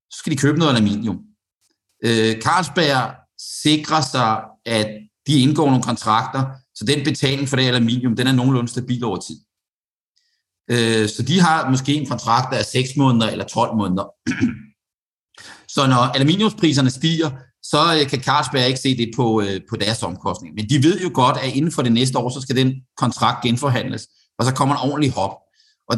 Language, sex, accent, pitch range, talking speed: Danish, male, native, 120-150 Hz, 170 wpm